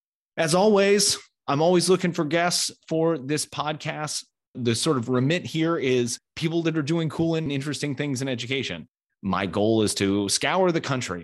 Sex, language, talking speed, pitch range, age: male, English, 175 wpm, 105-140 Hz, 30-49